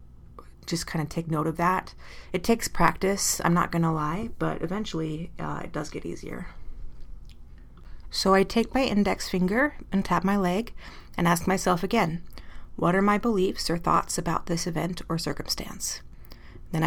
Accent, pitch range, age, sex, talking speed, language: American, 155-190 Hz, 30-49, female, 165 wpm, English